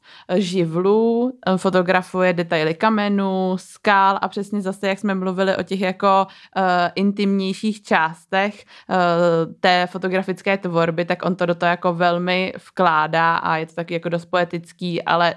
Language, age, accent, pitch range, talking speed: Czech, 20-39, native, 175-195 Hz, 145 wpm